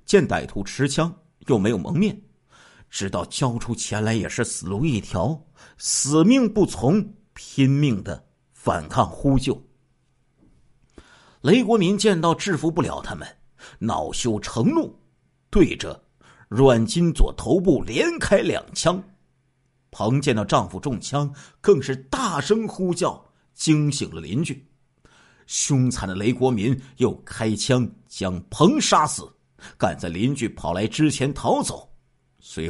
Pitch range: 105-155 Hz